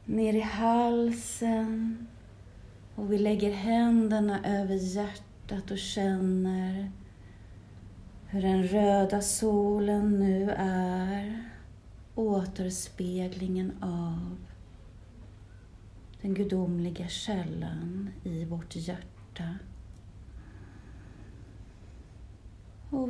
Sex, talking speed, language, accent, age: female, 70 wpm, English, Swedish, 30-49